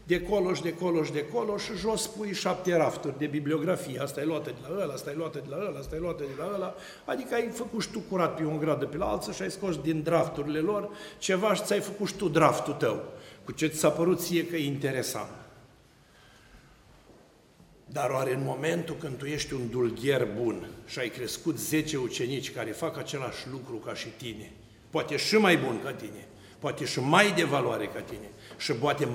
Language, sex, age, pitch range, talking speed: Romanian, male, 60-79, 130-170 Hz, 210 wpm